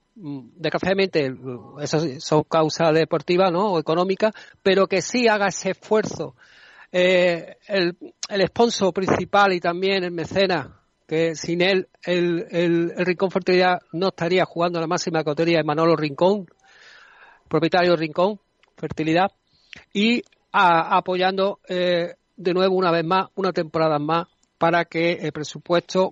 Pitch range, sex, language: 160-190 Hz, male, Spanish